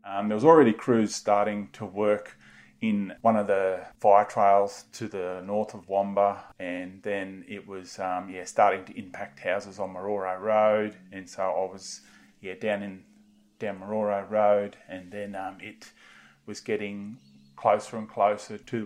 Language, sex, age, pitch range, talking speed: English, male, 30-49, 100-110 Hz, 165 wpm